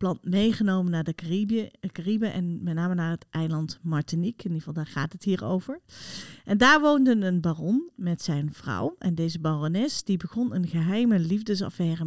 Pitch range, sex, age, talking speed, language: 165-220 Hz, female, 40-59, 185 wpm, Dutch